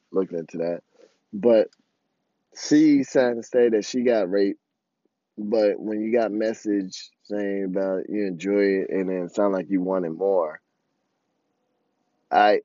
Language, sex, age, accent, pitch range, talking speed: English, male, 20-39, American, 100-120 Hz, 145 wpm